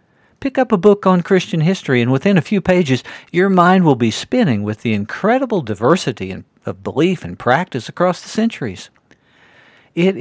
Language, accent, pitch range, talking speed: English, American, 115-175 Hz, 170 wpm